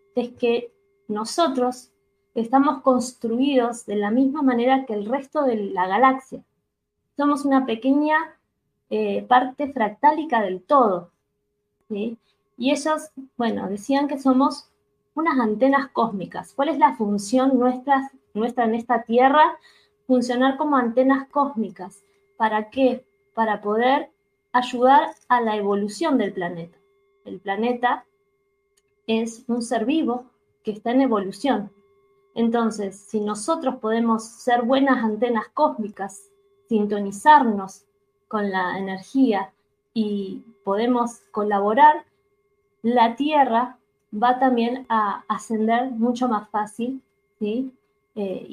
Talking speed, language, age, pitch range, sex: 115 wpm, Spanish, 20-39, 210-275 Hz, female